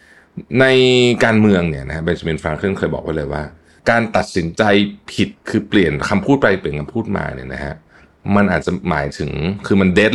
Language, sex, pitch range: Thai, male, 80-110 Hz